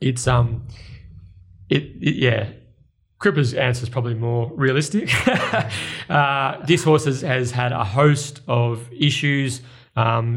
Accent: Australian